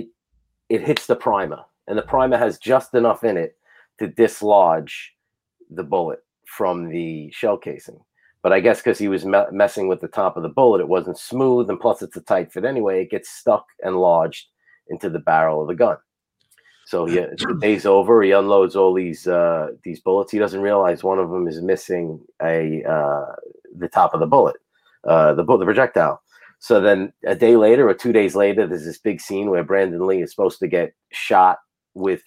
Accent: American